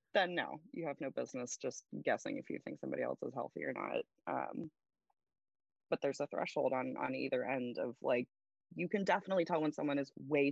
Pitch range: 130-185 Hz